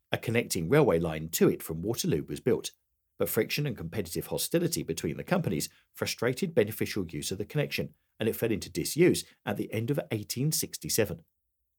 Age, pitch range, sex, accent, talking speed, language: 50-69, 85-120 Hz, male, British, 175 wpm, English